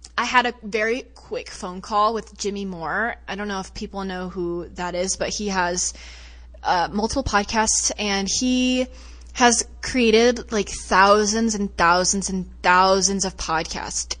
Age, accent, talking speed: 20-39, American, 155 wpm